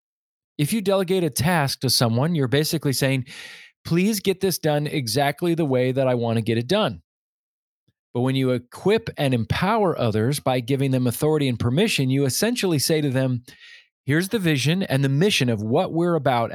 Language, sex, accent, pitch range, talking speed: English, male, American, 130-185 Hz, 190 wpm